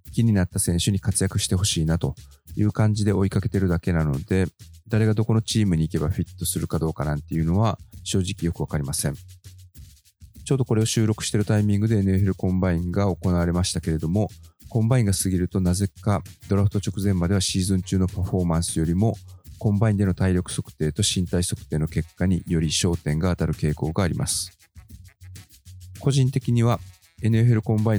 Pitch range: 85-100 Hz